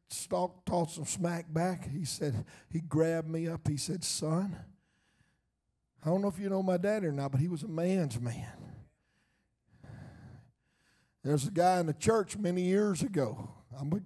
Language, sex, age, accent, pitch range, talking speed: English, male, 50-69, American, 150-190 Hz, 175 wpm